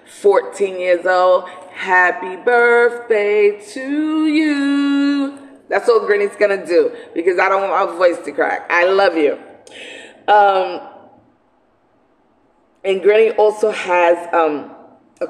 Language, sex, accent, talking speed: English, female, American, 120 wpm